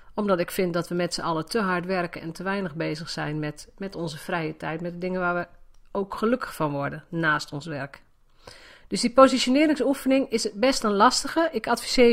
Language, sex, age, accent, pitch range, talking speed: Dutch, female, 40-59, Dutch, 170-230 Hz, 210 wpm